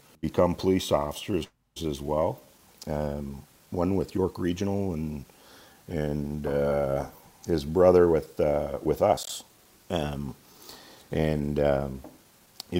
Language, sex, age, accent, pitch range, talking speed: English, male, 50-69, American, 75-90 Hz, 115 wpm